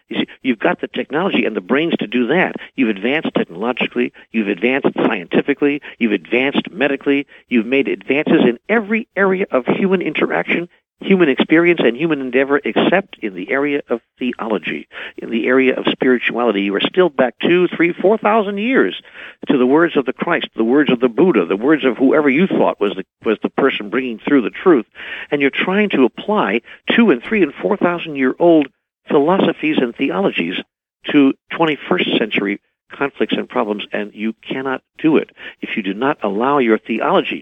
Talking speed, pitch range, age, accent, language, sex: 180 wpm, 120-175 Hz, 60-79, American, English, male